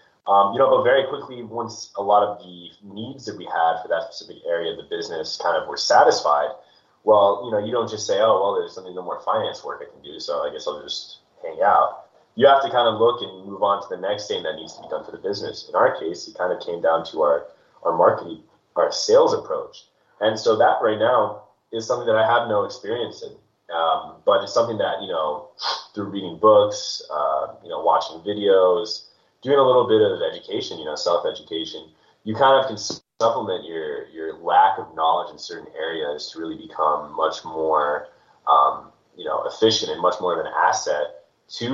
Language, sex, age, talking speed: English, male, 20-39, 220 wpm